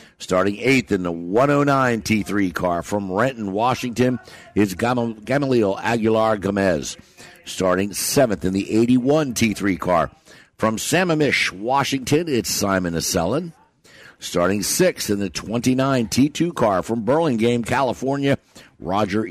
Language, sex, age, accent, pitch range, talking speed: English, male, 60-79, American, 95-130 Hz, 115 wpm